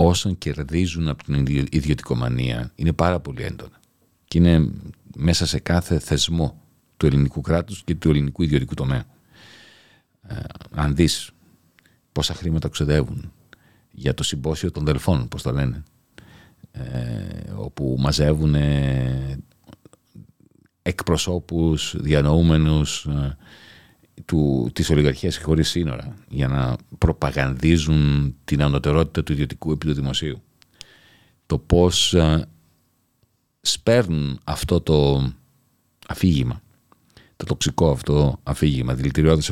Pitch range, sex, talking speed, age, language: 70-85 Hz, male, 95 wpm, 40-59, Greek